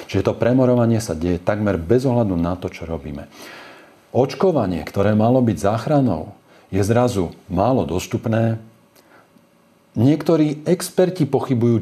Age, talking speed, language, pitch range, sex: 40-59, 120 wpm, Slovak, 95-125 Hz, male